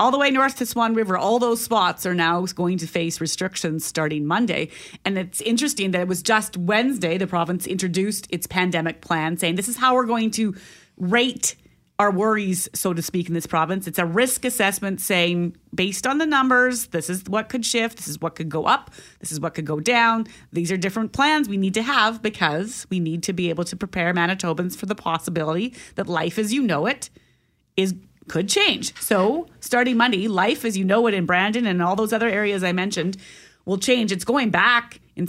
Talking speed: 215 wpm